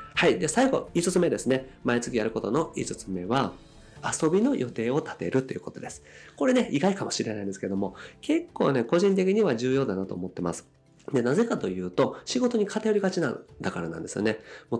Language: Japanese